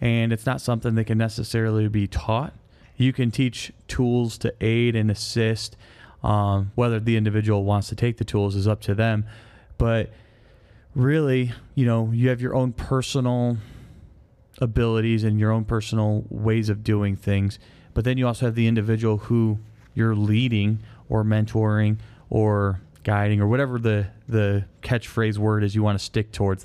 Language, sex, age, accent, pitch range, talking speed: English, male, 20-39, American, 110-130 Hz, 165 wpm